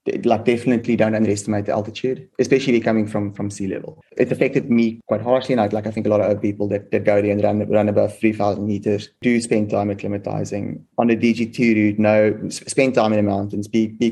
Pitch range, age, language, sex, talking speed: 105-110 Hz, 20-39, English, male, 230 wpm